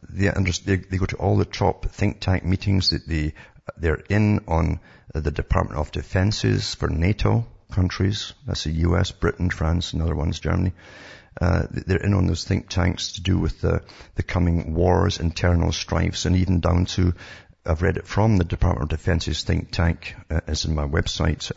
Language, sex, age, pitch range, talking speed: English, male, 50-69, 85-100 Hz, 185 wpm